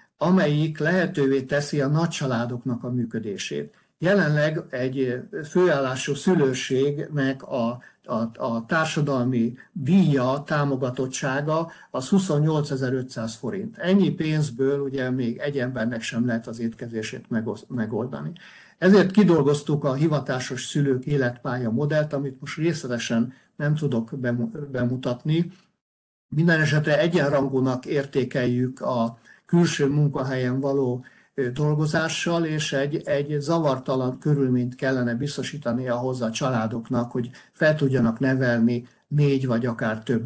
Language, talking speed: Hungarian, 105 wpm